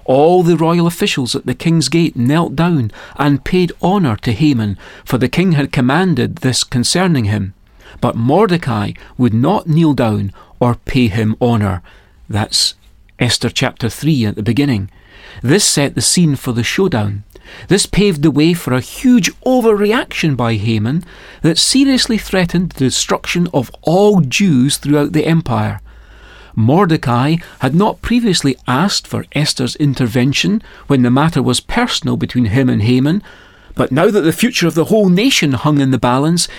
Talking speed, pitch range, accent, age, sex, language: 160 wpm, 125-180 Hz, British, 40-59, male, English